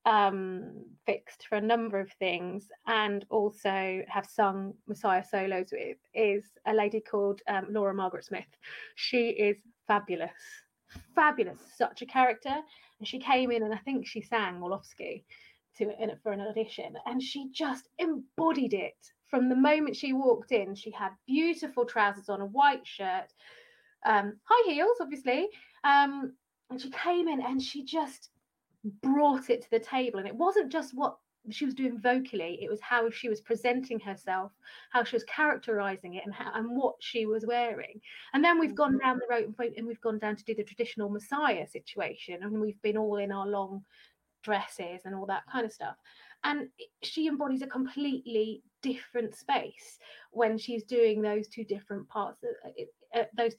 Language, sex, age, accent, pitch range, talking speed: English, female, 20-39, British, 210-275 Hz, 170 wpm